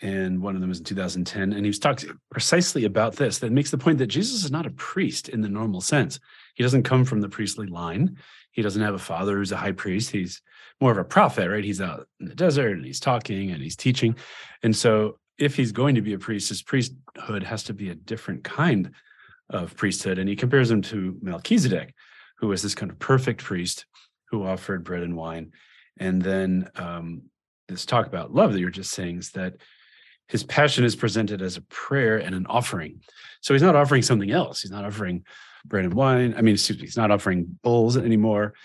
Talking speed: 220 wpm